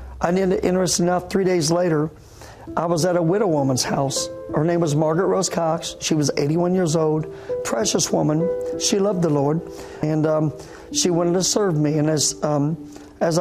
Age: 50-69